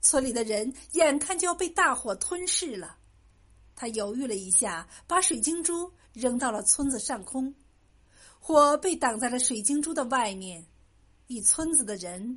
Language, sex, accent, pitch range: Chinese, female, native, 225-320 Hz